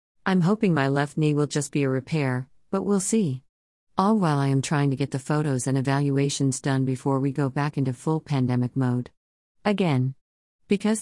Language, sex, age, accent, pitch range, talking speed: English, female, 50-69, American, 130-155 Hz, 190 wpm